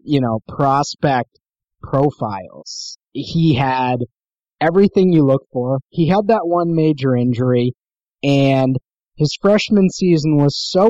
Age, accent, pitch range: 30-49, American, 125-160 Hz